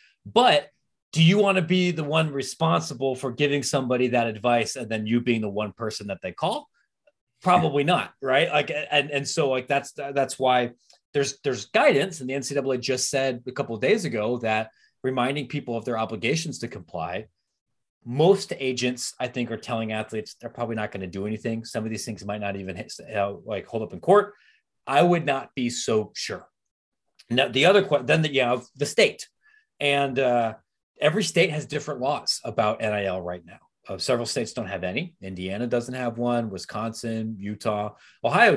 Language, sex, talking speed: English, male, 195 wpm